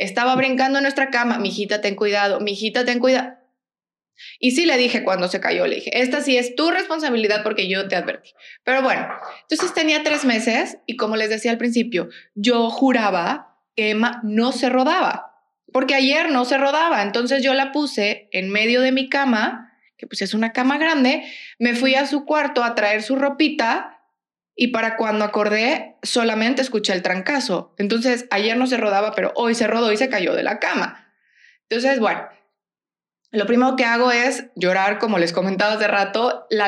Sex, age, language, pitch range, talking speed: female, 20-39, Spanish, 215-265 Hz, 190 wpm